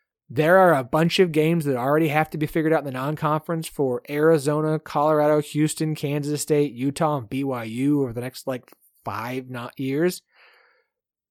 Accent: American